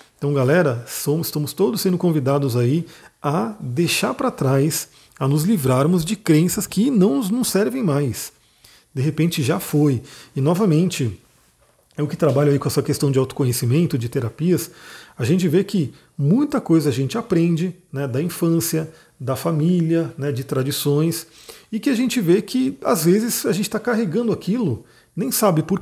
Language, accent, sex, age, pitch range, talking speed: Portuguese, Brazilian, male, 40-59, 135-180 Hz, 165 wpm